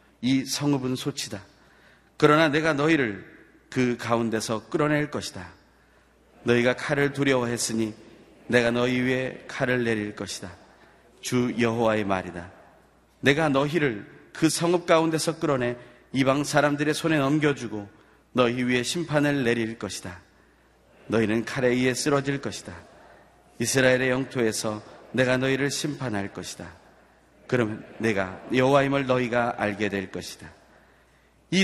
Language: Korean